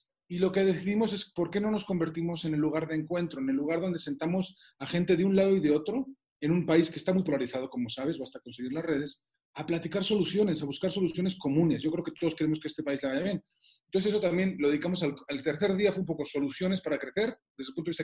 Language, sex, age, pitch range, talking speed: Spanish, male, 30-49, 150-190 Hz, 265 wpm